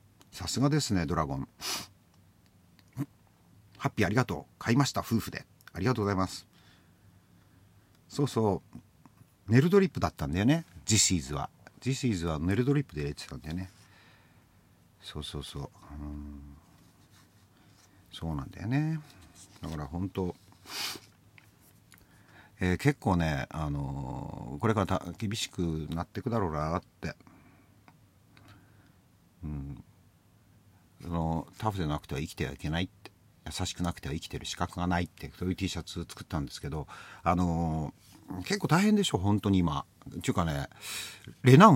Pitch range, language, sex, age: 85-110 Hz, Japanese, male, 50-69